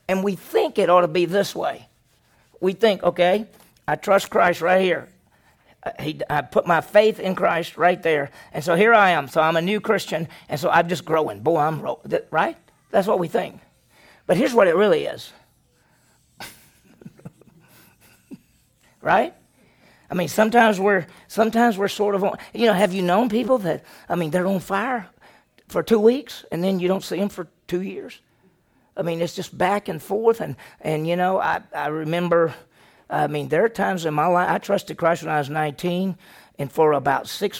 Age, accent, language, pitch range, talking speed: 50-69, American, English, 170-210 Hz, 195 wpm